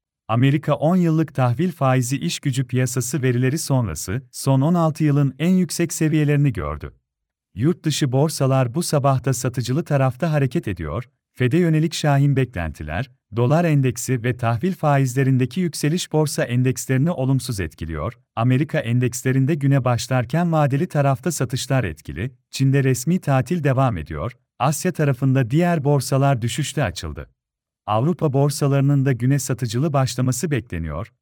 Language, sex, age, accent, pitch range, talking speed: Turkish, male, 40-59, native, 125-155 Hz, 125 wpm